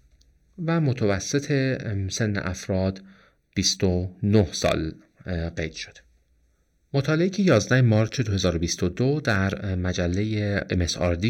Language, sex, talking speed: Persian, male, 85 wpm